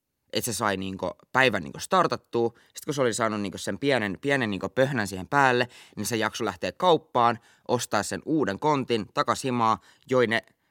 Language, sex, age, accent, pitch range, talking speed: Finnish, male, 20-39, native, 100-125 Hz, 175 wpm